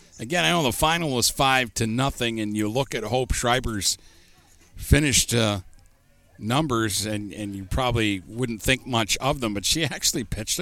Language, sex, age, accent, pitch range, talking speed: English, male, 50-69, American, 100-130 Hz, 175 wpm